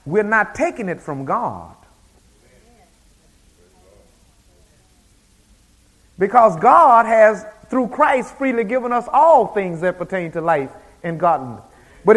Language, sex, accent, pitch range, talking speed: English, male, American, 165-230 Hz, 115 wpm